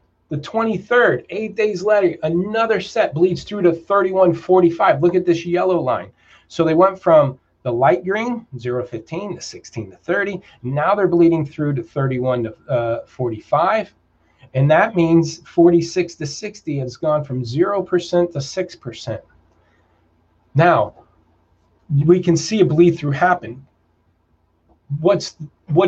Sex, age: male, 30-49